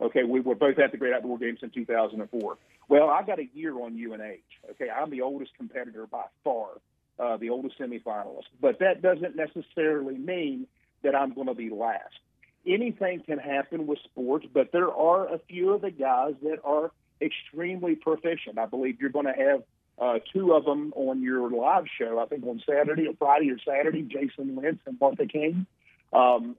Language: English